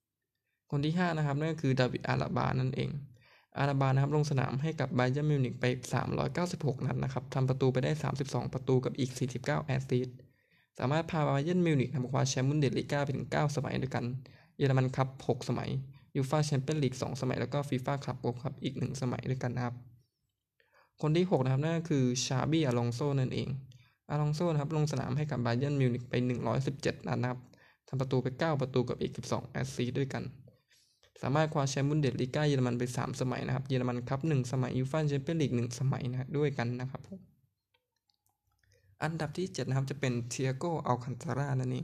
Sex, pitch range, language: male, 125-145 Hz, Thai